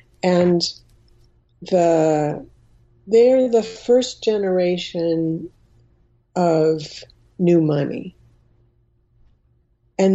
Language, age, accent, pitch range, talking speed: English, 50-69, American, 145-175 Hz, 60 wpm